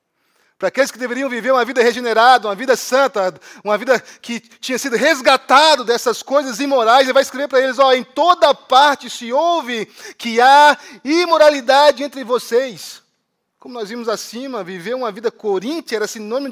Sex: male